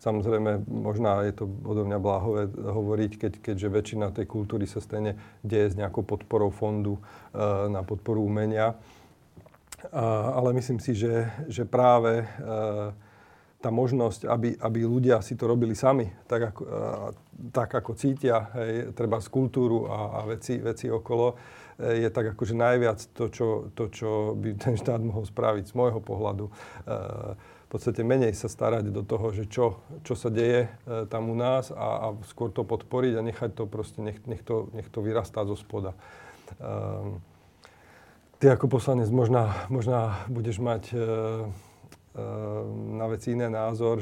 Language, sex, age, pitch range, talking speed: Slovak, male, 40-59, 105-120 Hz, 160 wpm